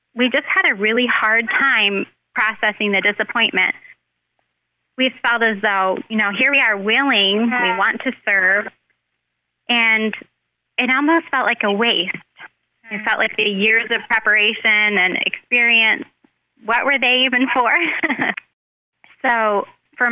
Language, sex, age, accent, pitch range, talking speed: English, female, 20-39, American, 205-245 Hz, 140 wpm